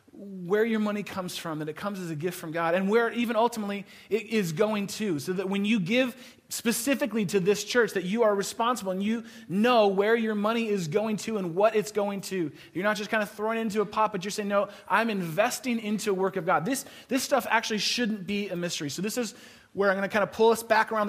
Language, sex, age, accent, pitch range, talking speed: English, male, 30-49, American, 175-220 Hz, 250 wpm